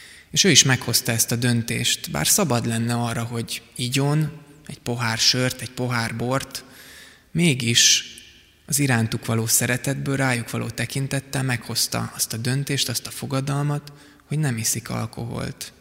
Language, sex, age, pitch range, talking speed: Hungarian, male, 20-39, 115-135 Hz, 145 wpm